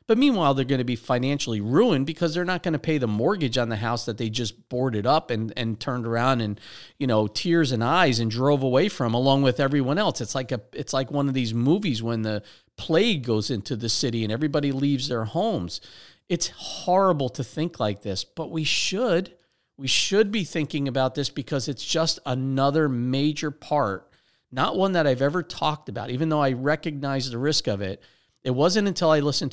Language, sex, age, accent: English, male, 40-59, American